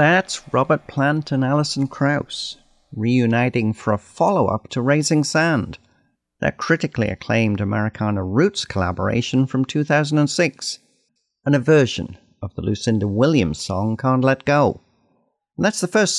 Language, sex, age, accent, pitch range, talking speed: English, male, 50-69, British, 110-150 Hz, 135 wpm